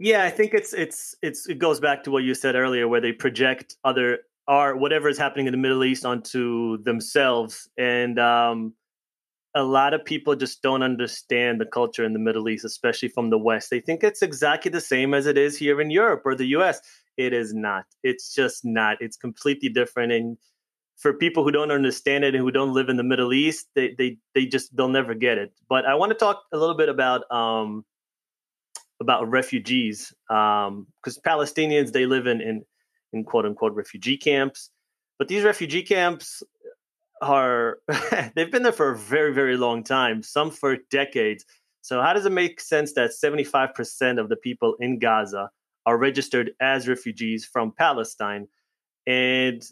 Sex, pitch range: male, 115-150 Hz